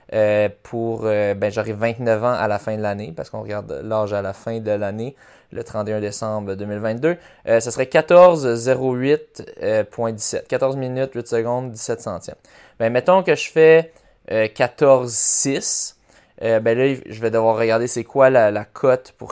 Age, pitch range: 20-39, 110-130 Hz